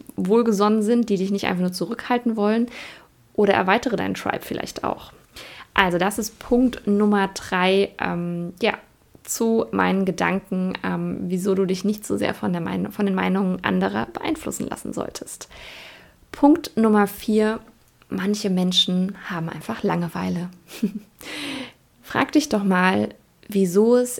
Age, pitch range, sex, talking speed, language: 20-39, 180-215 Hz, female, 140 wpm, German